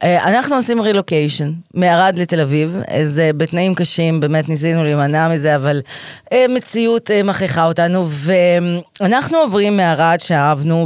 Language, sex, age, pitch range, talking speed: Hebrew, female, 30-49, 145-200 Hz, 115 wpm